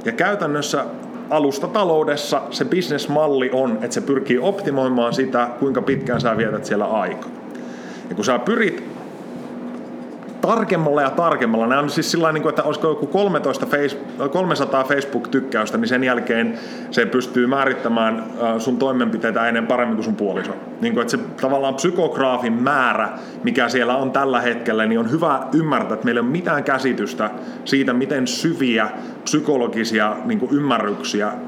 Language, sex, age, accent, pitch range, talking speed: Finnish, male, 30-49, native, 120-175 Hz, 130 wpm